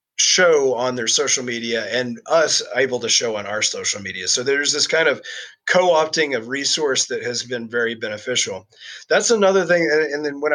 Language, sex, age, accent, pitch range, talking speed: English, male, 30-49, American, 125-170 Hz, 190 wpm